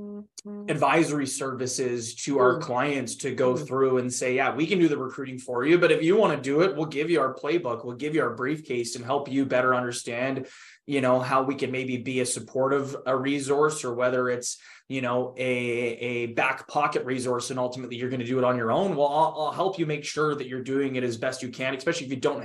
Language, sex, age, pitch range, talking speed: English, male, 20-39, 120-140 Hz, 240 wpm